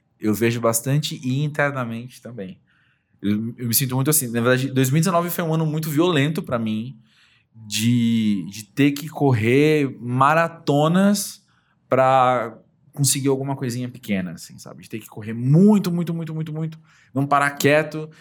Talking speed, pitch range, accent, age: 155 wpm, 115-150 Hz, Brazilian, 20-39